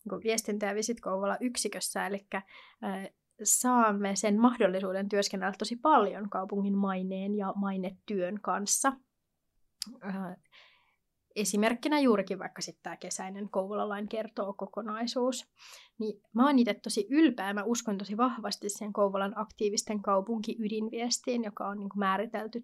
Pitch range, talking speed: 200-235 Hz, 115 wpm